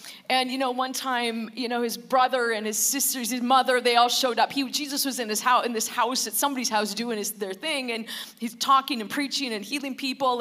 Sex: female